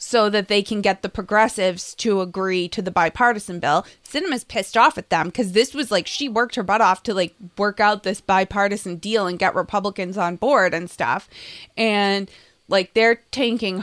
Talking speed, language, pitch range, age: 195 wpm, English, 185-225 Hz, 20-39